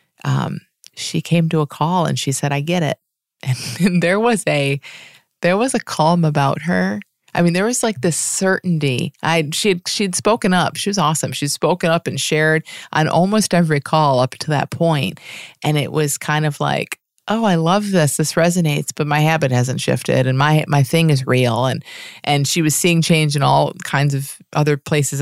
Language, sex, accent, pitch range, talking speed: English, female, American, 140-175 Hz, 200 wpm